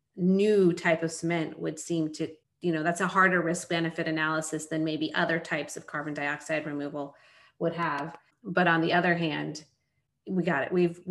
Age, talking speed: 30-49, 185 wpm